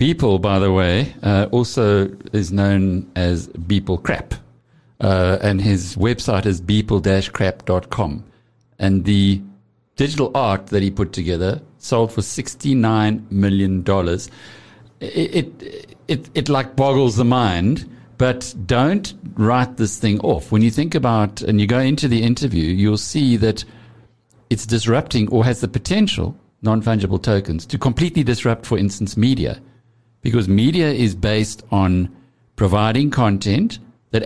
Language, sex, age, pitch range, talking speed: English, male, 60-79, 95-120 Hz, 135 wpm